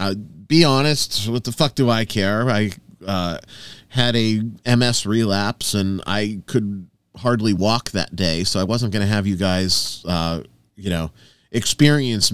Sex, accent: male, American